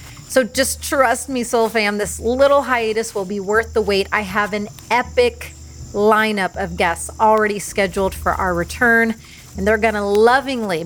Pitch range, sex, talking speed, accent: 190-230 Hz, female, 170 wpm, American